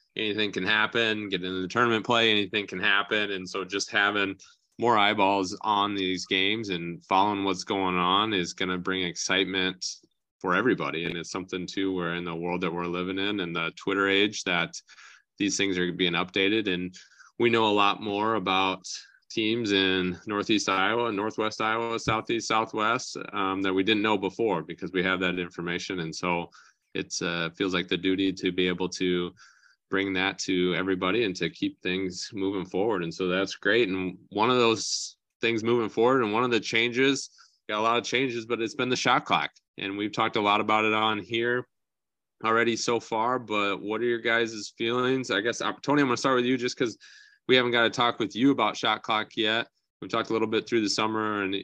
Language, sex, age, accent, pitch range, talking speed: English, male, 20-39, American, 95-115 Hz, 205 wpm